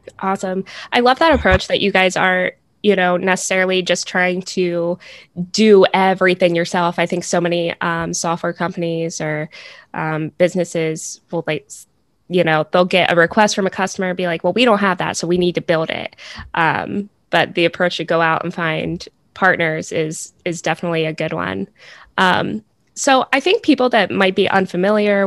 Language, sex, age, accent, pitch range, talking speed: English, female, 10-29, American, 160-185 Hz, 185 wpm